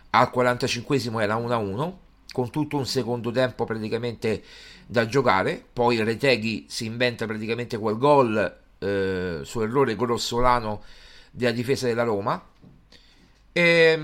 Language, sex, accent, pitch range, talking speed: Italian, male, native, 120-155 Hz, 120 wpm